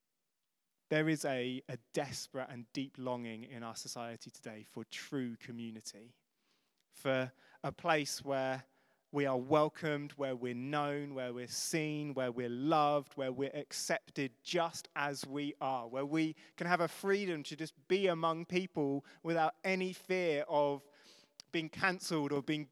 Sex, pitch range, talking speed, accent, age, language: male, 140-190 Hz, 150 wpm, British, 30-49, English